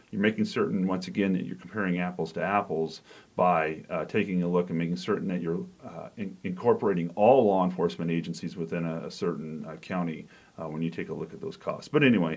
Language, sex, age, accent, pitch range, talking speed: English, male, 40-59, American, 90-120 Hz, 215 wpm